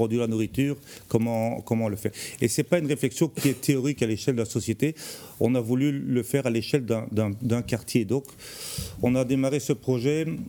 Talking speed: 210 wpm